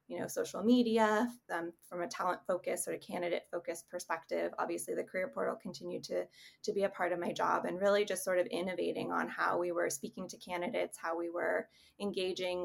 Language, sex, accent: English, female, American